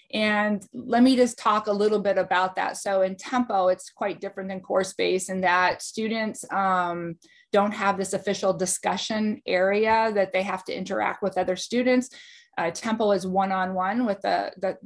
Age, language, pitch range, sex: 20-39, English, 190-240 Hz, female